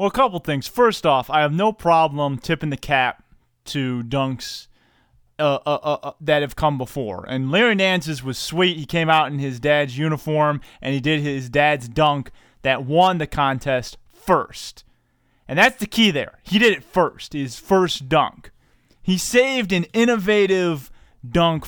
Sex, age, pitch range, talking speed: male, 20-39, 145-230 Hz, 175 wpm